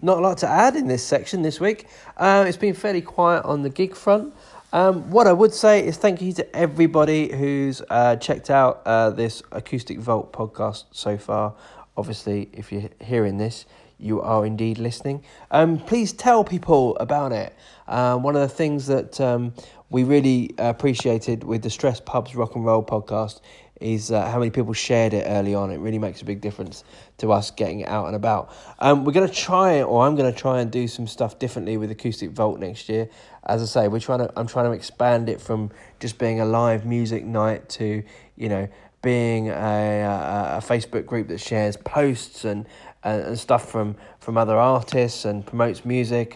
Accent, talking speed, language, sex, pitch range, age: British, 200 wpm, English, male, 110-145 Hz, 20-39